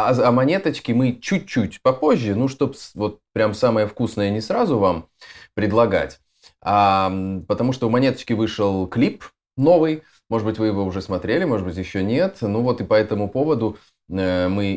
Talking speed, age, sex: 165 wpm, 20-39, male